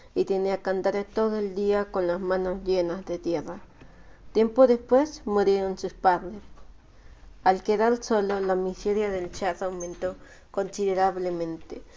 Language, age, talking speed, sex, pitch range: Spanish, 40-59, 135 wpm, female, 180-210 Hz